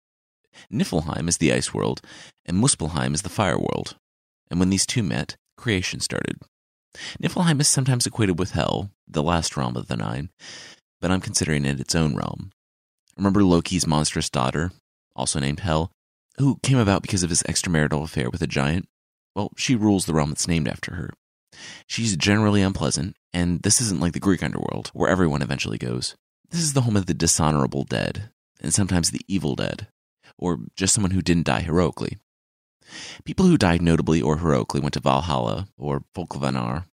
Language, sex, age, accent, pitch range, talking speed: English, male, 30-49, American, 70-100 Hz, 175 wpm